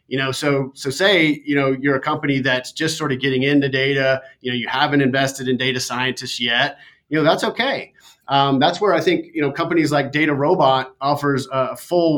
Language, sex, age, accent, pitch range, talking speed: English, male, 30-49, American, 130-145 Hz, 215 wpm